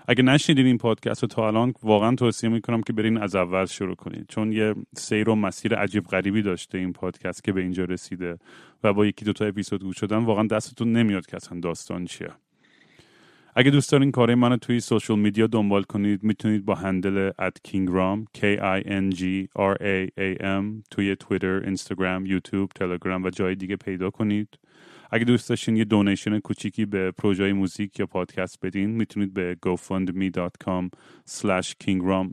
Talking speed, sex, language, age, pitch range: 160 wpm, male, Persian, 30-49, 95-110 Hz